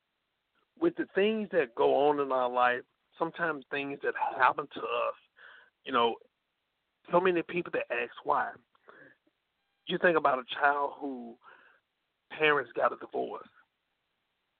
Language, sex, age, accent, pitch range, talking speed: English, male, 50-69, American, 125-185 Hz, 135 wpm